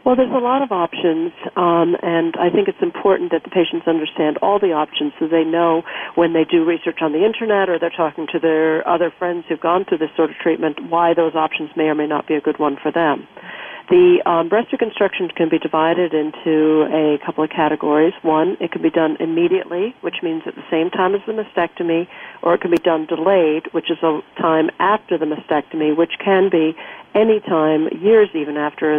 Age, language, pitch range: 50-69, English, 155-180 Hz